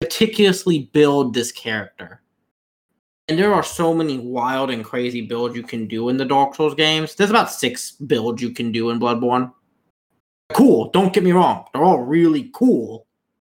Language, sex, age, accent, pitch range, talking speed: English, male, 20-39, American, 120-155 Hz, 175 wpm